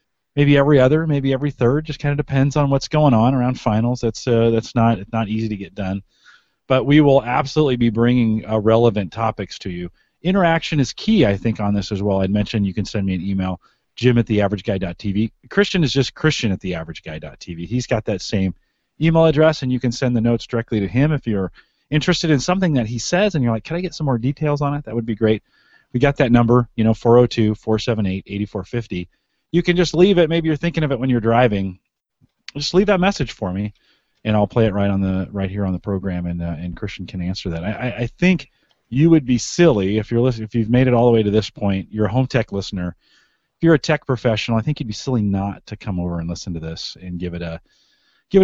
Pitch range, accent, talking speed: 100-145 Hz, American, 240 wpm